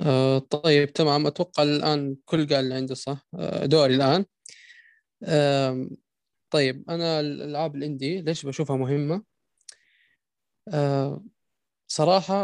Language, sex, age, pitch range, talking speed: Arabic, male, 20-39, 135-175 Hz, 105 wpm